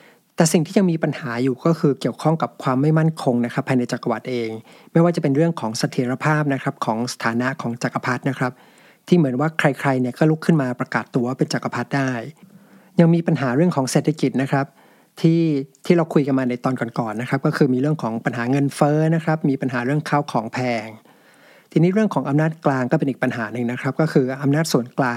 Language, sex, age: English, male, 60-79